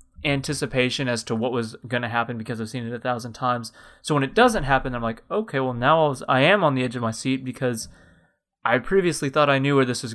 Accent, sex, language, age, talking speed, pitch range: American, male, English, 20-39, 255 wpm, 125-150 Hz